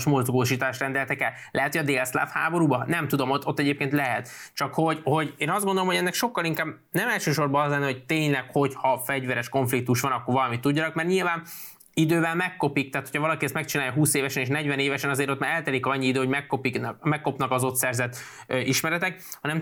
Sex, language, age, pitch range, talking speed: male, Hungarian, 20-39, 140-175 Hz, 200 wpm